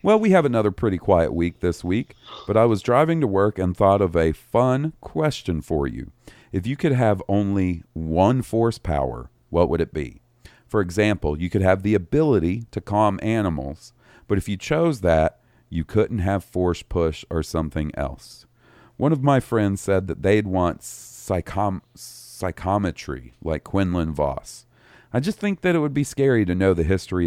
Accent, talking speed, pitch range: American, 180 wpm, 80-115 Hz